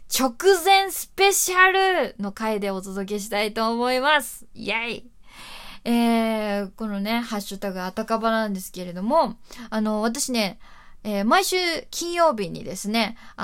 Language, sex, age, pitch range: Japanese, female, 20-39, 200-280 Hz